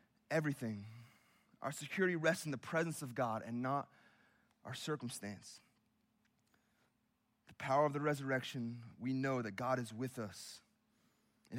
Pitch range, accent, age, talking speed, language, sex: 120-150 Hz, American, 30-49, 135 wpm, English, male